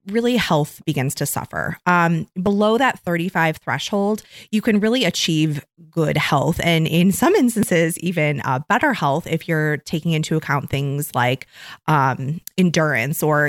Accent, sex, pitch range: American, female, 150-180 Hz